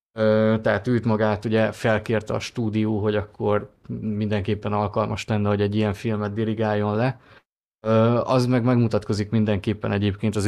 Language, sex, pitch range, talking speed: Hungarian, male, 105-115 Hz, 150 wpm